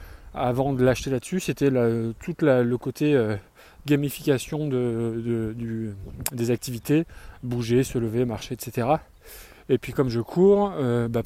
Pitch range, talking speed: 115-145 Hz, 130 wpm